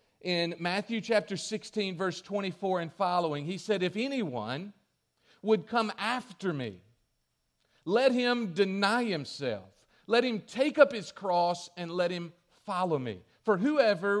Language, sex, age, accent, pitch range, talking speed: English, male, 50-69, American, 135-200 Hz, 140 wpm